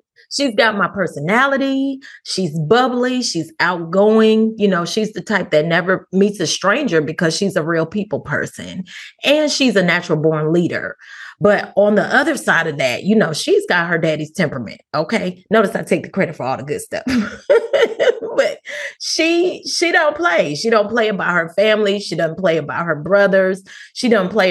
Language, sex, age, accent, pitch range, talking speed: English, female, 30-49, American, 170-230 Hz, 185 wpm